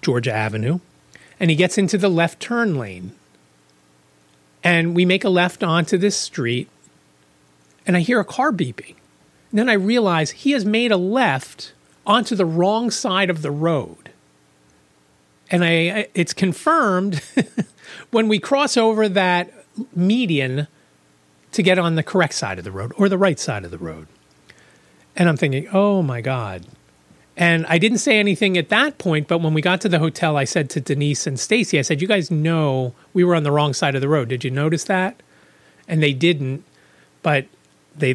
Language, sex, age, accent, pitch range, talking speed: English, male, 40-59, American, 115-195 Hz, 185 wpm